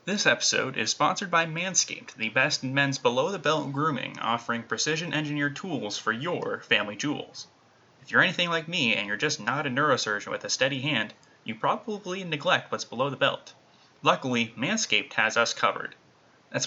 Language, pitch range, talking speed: English, 130-155 Hz, 170 wpm